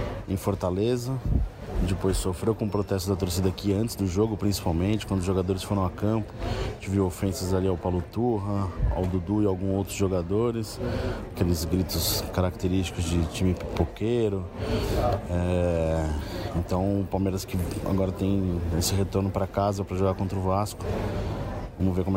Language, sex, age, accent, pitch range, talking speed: Portuguese, male, 20-39, Brazilian, 95-110 Hz, 155 wpm